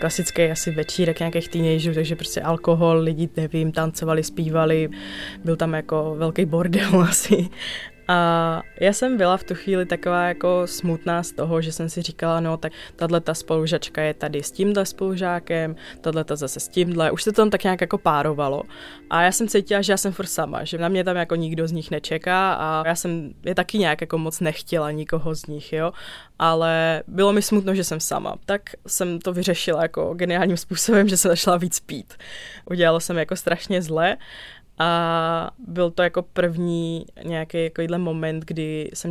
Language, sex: Czech, female